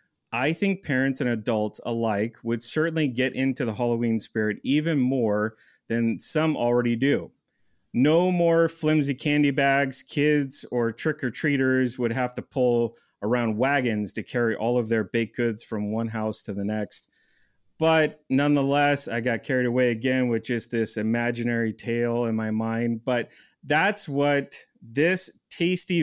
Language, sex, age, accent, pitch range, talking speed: English, male, 30-49, American, 115-140 Hz, 155 wpm